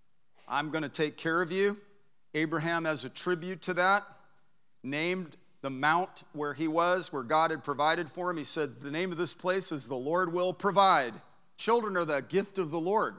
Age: 40-59